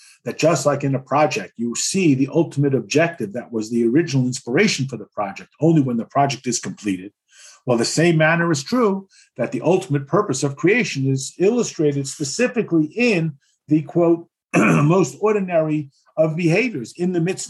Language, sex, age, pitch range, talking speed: English, male, 50-69, 130-170 Hz, 170 wpm